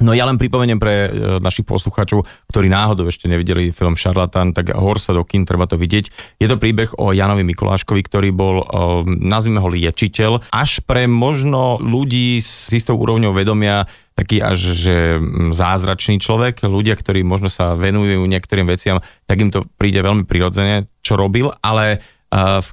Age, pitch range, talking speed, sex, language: 30-49, 95-115 Hz, 160 wpm, male, Slovak